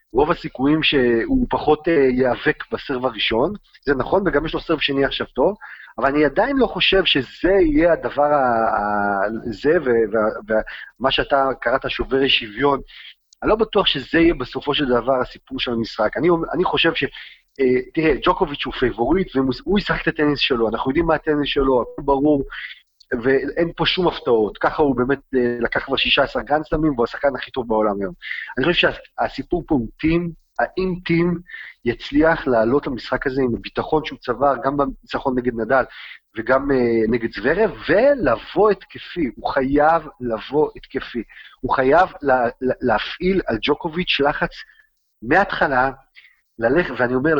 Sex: male